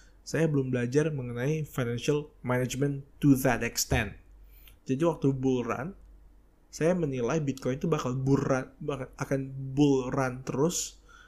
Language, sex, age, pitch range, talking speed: Indonesian, male, 20-39, 100-145 Hz, 130 wpm